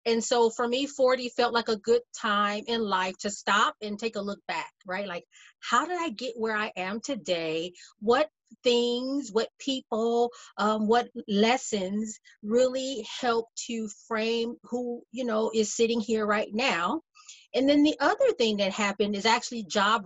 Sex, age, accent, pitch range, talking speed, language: female, 30-49, American, 205-255 Hz, 175 wpm, English